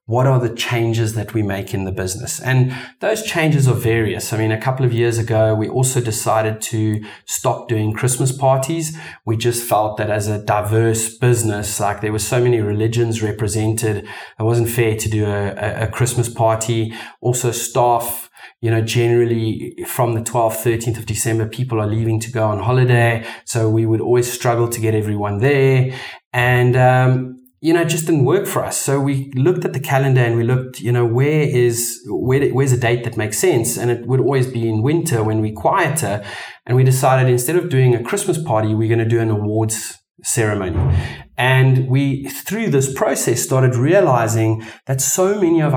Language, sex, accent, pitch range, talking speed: English, male, South African, 110-130 Hz, 195 wpm